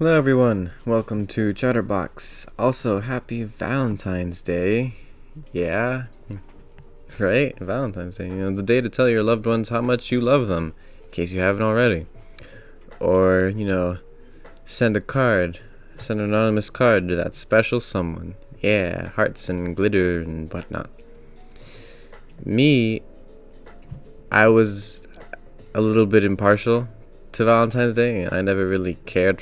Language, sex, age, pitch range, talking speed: English, male, 20-39, 90-115 Hz, 135 wpm